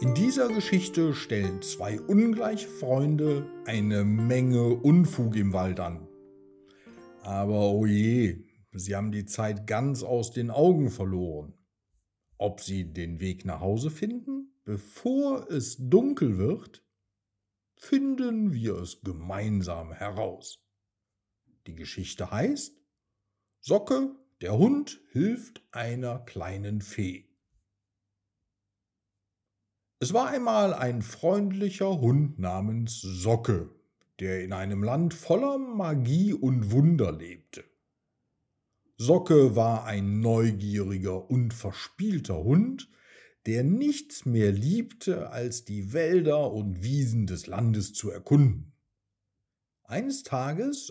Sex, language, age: male, German, 50-69